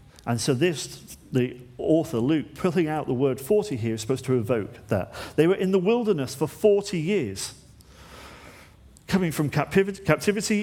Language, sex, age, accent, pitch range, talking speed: English, male, 40-59, British, 115-165 Hz, 160 wpm